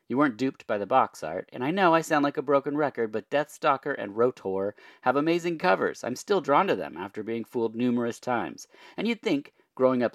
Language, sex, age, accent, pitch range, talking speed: English, male, 40-59, American, 105-170 Hz, 225 wpm